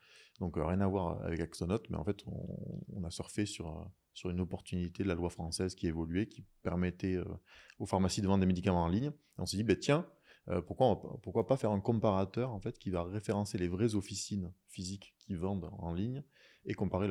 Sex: male